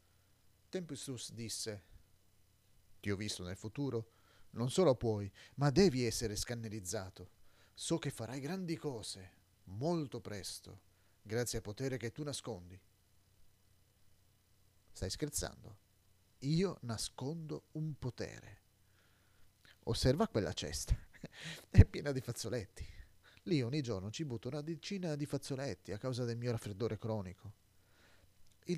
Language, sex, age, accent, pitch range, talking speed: Italian, male, 40-59, native, 95-125 Hz, 115 wpm